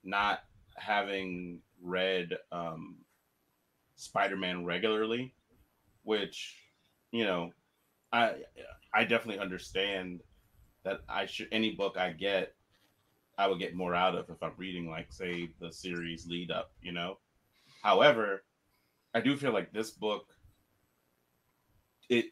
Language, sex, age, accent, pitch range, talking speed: English, male, 30-49, American, 85-100 Hz, 120 wpm